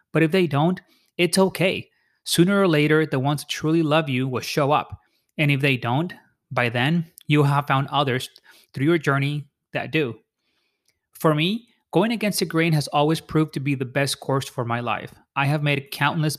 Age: 30-49